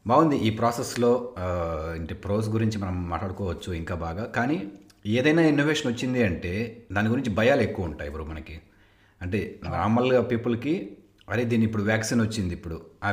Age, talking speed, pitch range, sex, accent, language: 30-49, 145 wpm, 95-115 Hz, male, native, Telugu